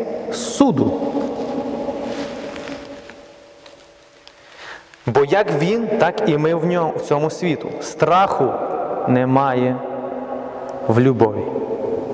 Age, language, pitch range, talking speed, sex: 30-49, Ukrainian, 130-200 Hz, 80 wpm, male